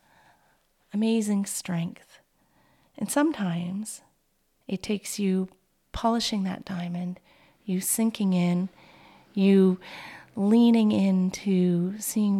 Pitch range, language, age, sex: 185-235 Hz, English, 40-59, female